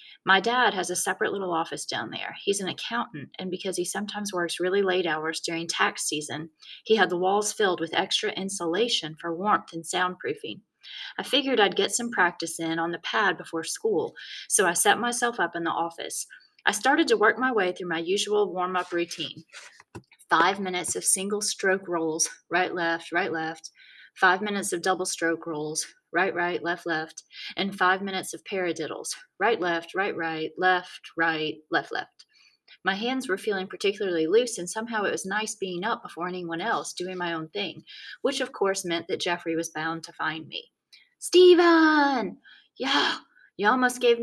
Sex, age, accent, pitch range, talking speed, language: female, 30-49, American, 165-210 Hz, 180 wpm, English